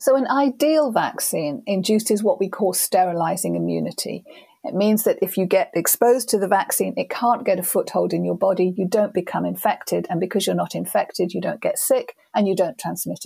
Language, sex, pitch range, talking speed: English, female, 180-230 Hz, 205 wpm